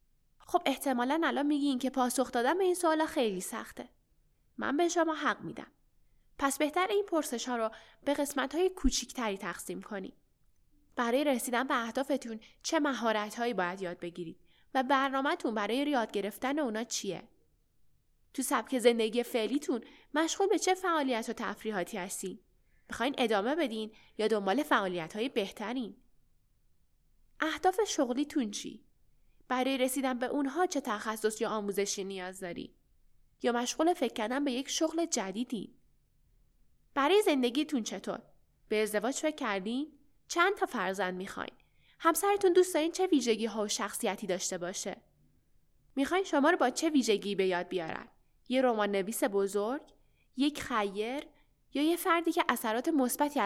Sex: female